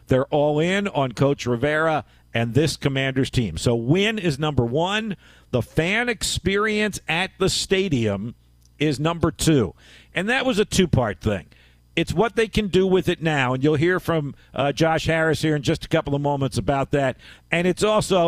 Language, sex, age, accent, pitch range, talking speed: English, male, 50-69, American, 130-175 Hz, 185 wpm